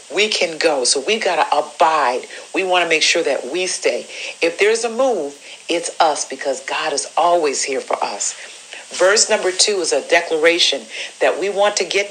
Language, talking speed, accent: English, 200 wpm, American